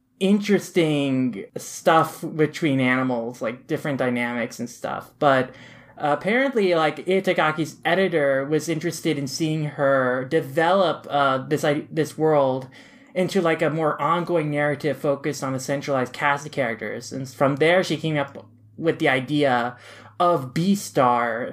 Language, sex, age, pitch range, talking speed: English, male, 20-39, 130-160 Hz, 140 wpm